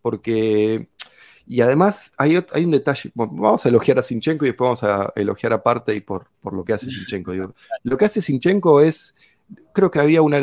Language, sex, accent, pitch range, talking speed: English, male, Argentinian, 115-150 Hz, 195 wpm